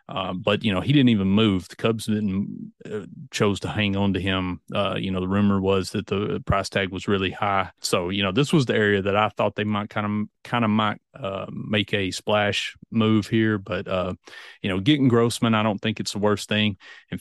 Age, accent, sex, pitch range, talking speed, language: 30-49, American, male, 95-110 Hz, 230 wpm, English